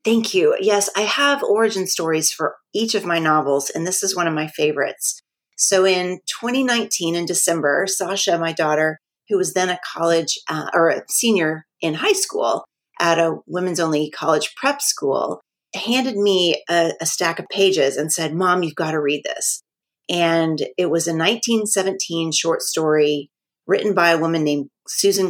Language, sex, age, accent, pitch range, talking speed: English, female, 30-49, American, 155-195 Hz, 175 wpm